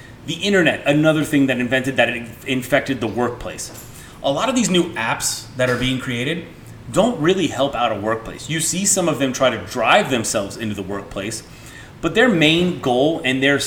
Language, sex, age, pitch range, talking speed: English, male, 30-49, 115-145 Hz, 200 wpm